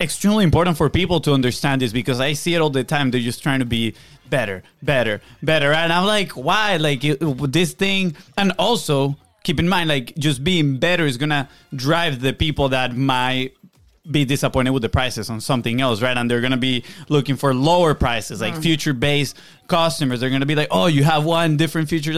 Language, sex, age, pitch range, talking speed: English, male, 20-39, 130-160 Hz, 205 wpm